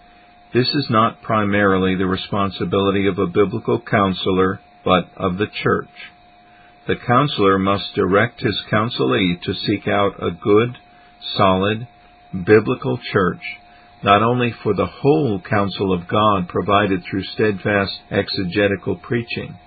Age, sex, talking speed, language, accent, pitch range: 50-69, male, 125 wpm, English, American, 100-115 Hz